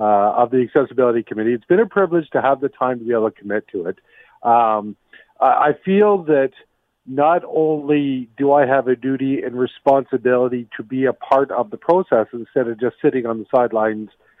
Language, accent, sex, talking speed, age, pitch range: English, American, male, 195 wpm, 50-69, 120-160 Hz